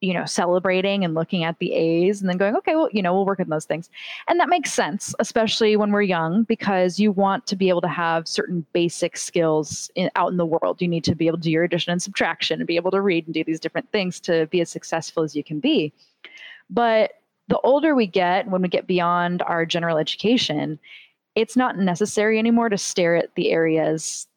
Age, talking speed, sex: 20-39, 230 wpm, female